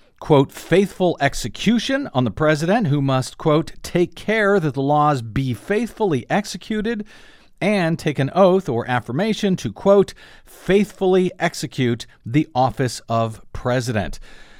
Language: English